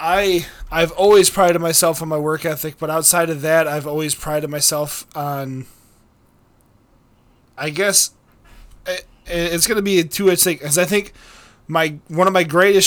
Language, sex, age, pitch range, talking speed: English, male, 20-39, 135-165 Hz, 170 wpm